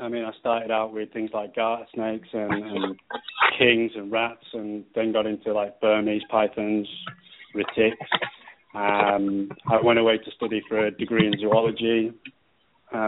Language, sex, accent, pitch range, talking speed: English, male, British, 105-115 Hz, 160 wpm